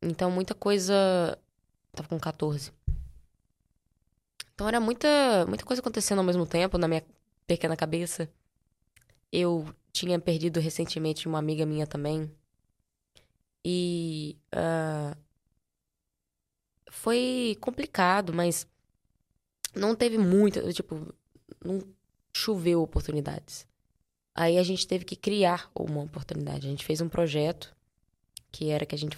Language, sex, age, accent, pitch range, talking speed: Portuguese, female, 10-29, Brazilian, 150-180 Hz, 115 wpm